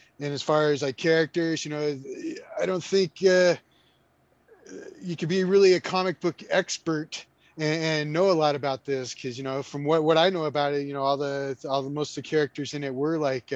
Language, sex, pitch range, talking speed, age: English, male, 135-160 Hz, 225 wpm, 20-39